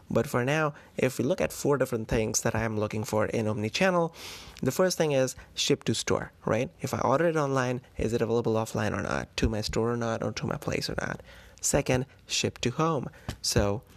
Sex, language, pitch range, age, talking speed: male, English, 110-125 Hz, 20-39, 220 wpm